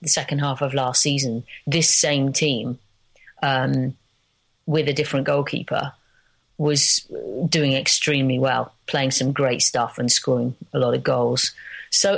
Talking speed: 145 wpm